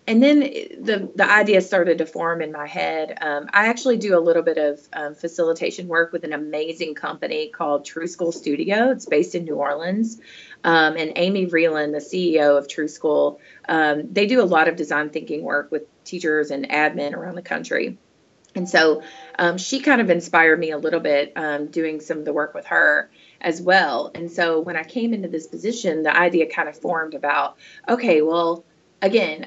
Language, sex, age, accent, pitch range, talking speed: English, female, 30-49, American, 155-195 Hz, 200 wpm